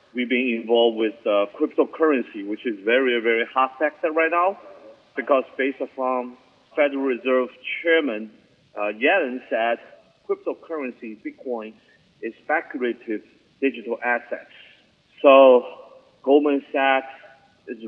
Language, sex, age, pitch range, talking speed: English, male, 40-59, 110-130 Hz, 110 wpm